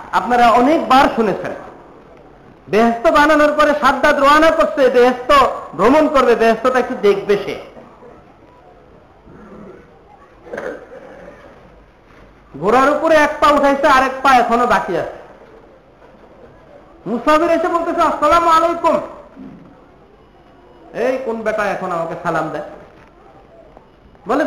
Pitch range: 190-295 Hz